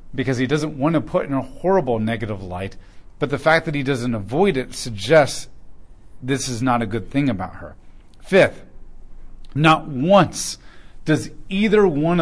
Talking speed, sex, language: 165 wpm, male, English